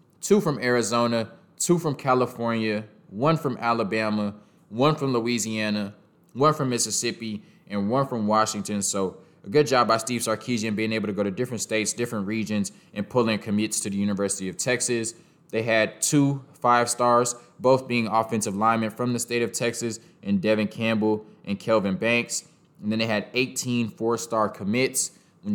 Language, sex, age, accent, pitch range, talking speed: English, male, 20-39, American, 110-125 Hz, 165 wpm